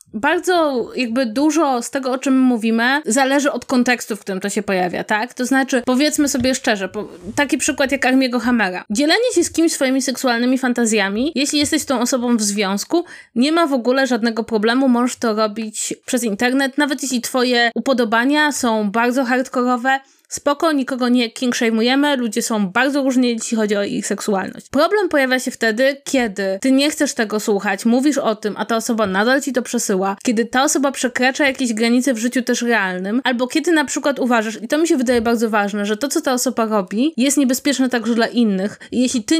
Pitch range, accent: 230-275 Hz, native